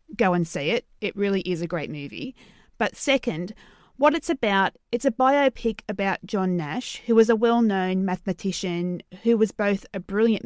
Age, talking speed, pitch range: 30-49, 180 wpm, 180-240 Hz